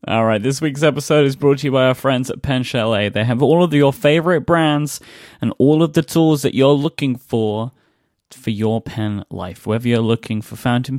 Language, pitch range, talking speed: English, 110-145 Hz, 220 wpm